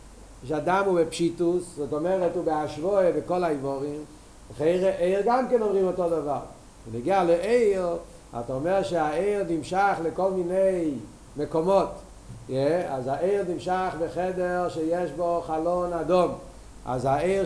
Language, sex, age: Hebrew, male, 50-69